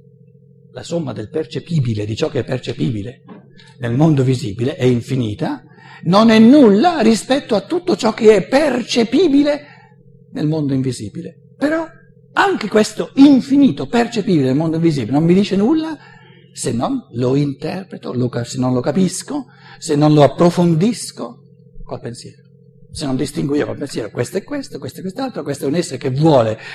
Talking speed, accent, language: 160 wpm, native, Italian